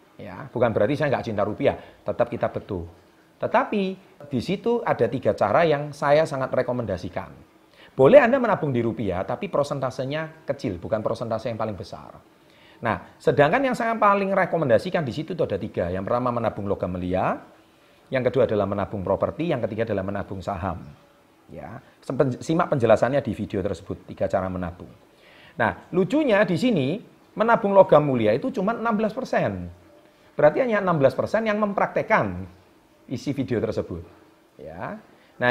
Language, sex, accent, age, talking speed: Indonesian, male, native, 40-59, 145 wpm